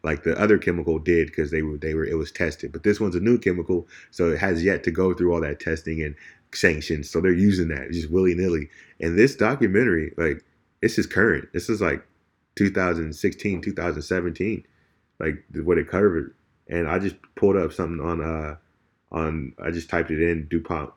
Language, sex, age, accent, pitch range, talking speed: English, male, 20-39, American, 80-95 Hz, 195 wpm